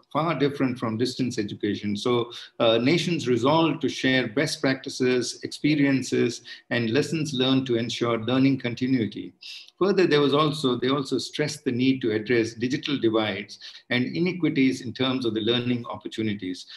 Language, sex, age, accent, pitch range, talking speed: English, male, 50-69, Indian, 115-140 Hz, 150 wpm